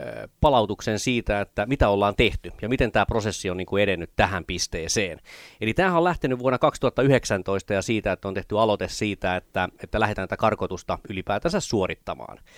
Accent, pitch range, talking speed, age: native, 95-120 Hz, 165 wpm, 30-49